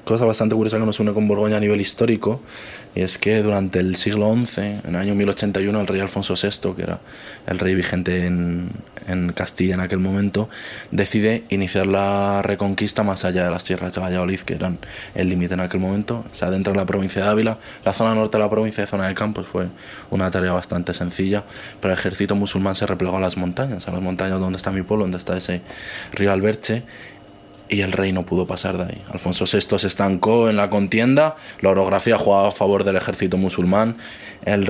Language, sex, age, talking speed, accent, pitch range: Spanish, male, 20-39, 215 wpm, Spanish, 95-105 Hz